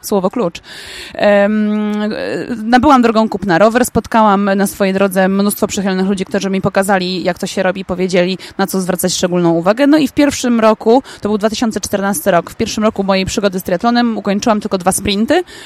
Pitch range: 185-235 Hz